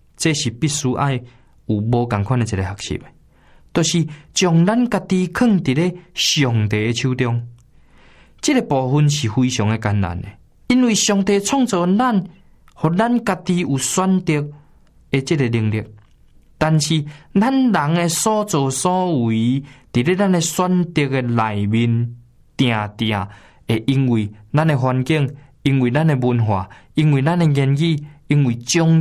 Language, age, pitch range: Chinese, 20-39, 120-165 Hz